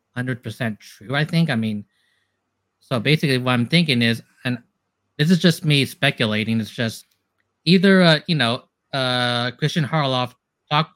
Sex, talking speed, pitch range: male, 155 wpm, 115-150 Hz